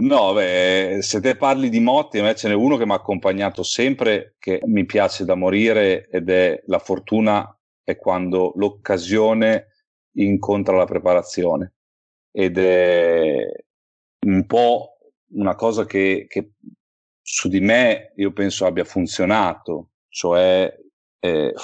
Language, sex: Italian, male